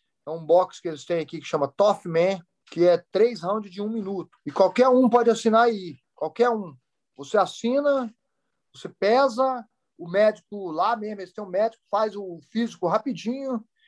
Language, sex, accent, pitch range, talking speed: English, male, Brazilian, 190-245 Hz, 175 wpm